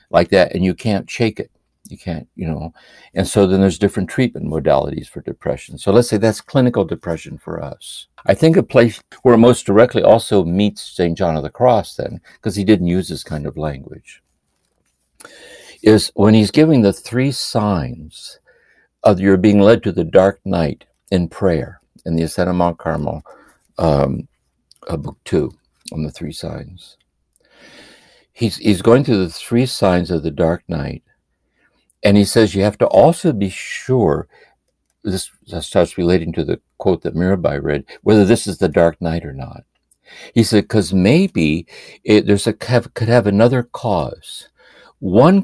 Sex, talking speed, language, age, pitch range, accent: male, 170 wpm, English, 60-79, 85-110 Hz, American